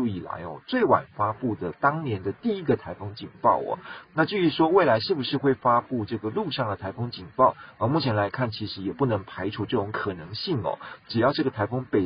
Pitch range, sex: 105-135 Hz, male